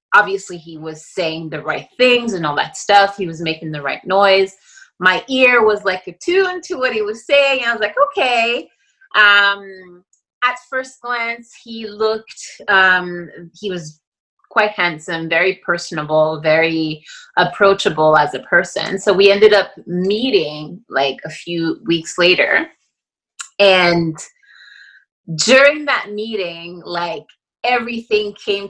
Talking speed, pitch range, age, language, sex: 140 wpm, 170-220 Hz, 30-49, English, female